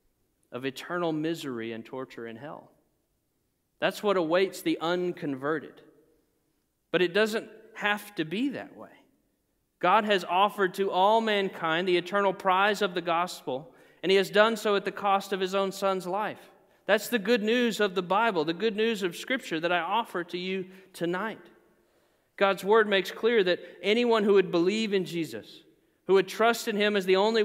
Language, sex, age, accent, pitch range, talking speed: English, male, 40-59, American, 165-205 Hz, 180 wpm